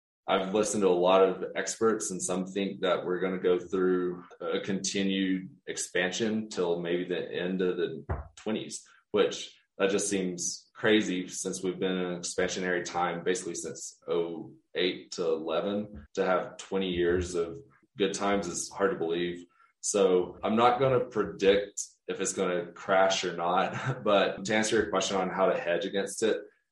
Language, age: English, 20-39